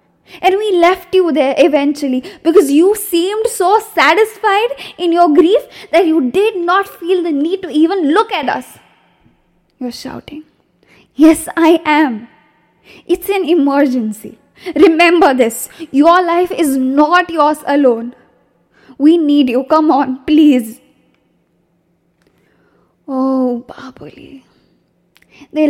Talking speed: 120 wpm